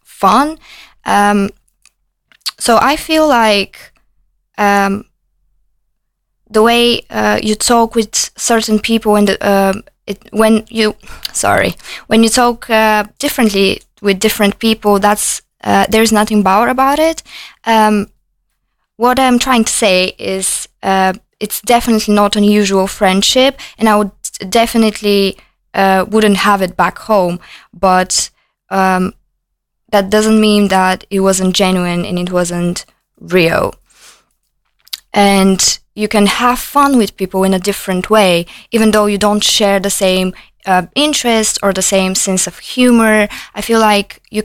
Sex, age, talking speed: female, 20-39, 135 wpm